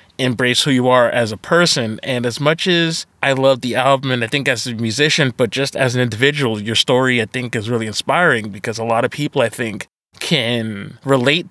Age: 30-49